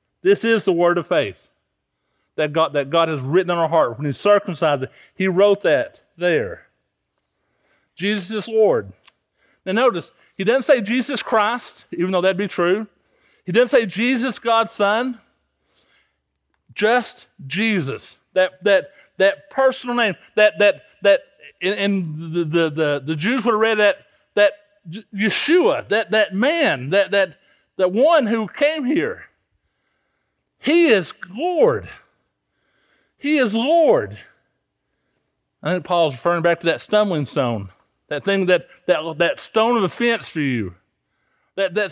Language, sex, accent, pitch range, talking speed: English, male, American, 170-245 Hz, 145 wpm